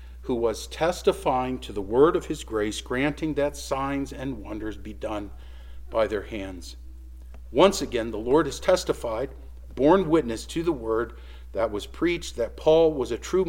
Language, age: English, 50-69